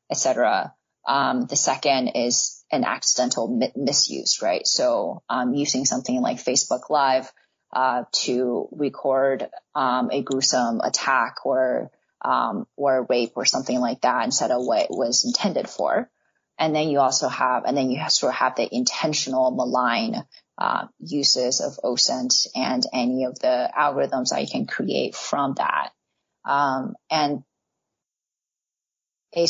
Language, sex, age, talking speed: English, female, 20-39, 145 wpm